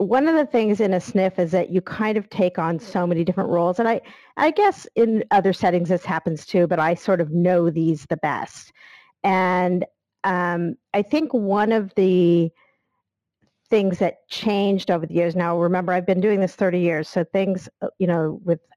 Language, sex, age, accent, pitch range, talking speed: English, female, 50-69, American, 170-195 Hz, 200 wpm